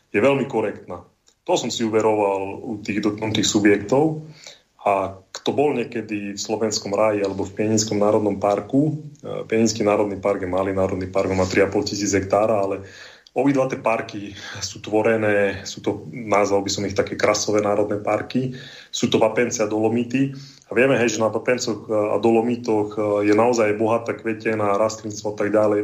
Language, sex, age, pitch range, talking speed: Slovak, male, 30-49, 100-115 Hz, 165 wpm